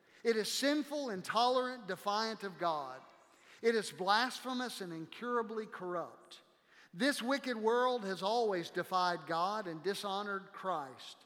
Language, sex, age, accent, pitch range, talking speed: English, male, 50-69, American, 175-230 Hz, 125 wpm